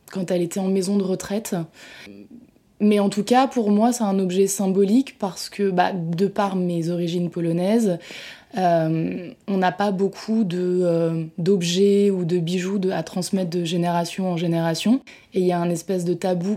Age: 20-39